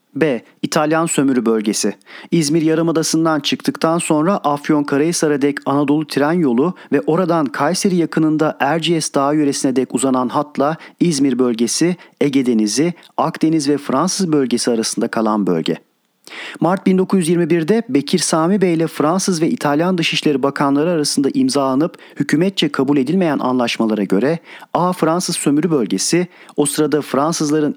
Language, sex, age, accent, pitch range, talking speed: Turkish, male, 40-59, native, 130-165 Hz, 125 wpm